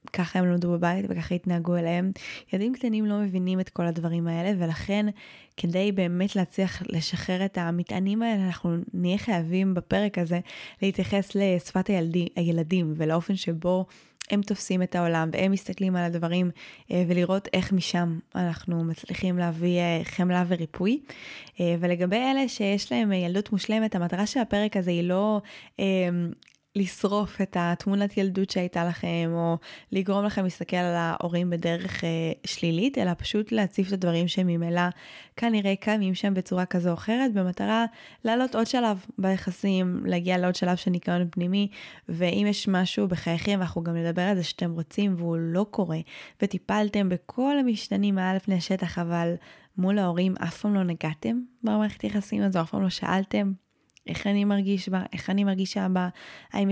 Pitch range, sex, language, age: 175-200 Hz, female, Hebrew, 20-39